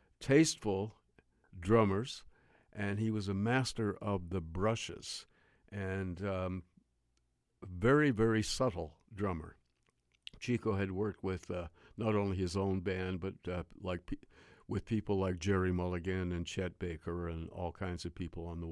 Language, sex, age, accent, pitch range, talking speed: English, male, 60-79, American, 90-115 Hz, 145 wpm